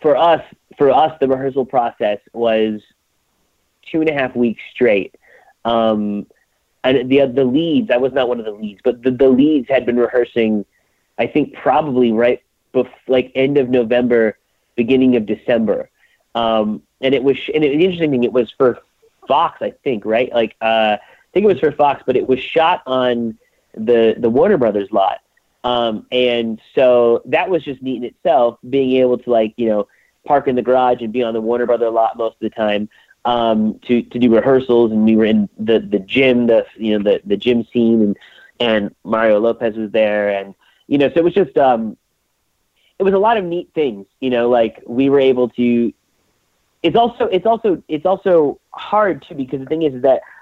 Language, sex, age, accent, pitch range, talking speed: English, male, 30-49, American, 115-135 Hz, 200 wpm